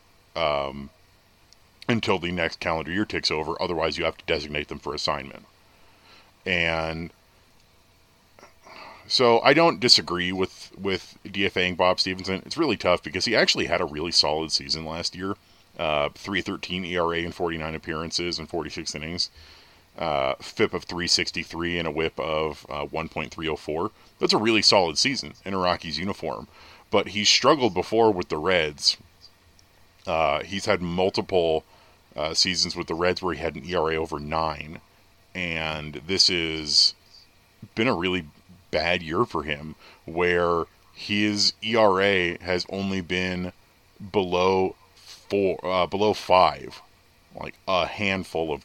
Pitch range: 80-95 Hz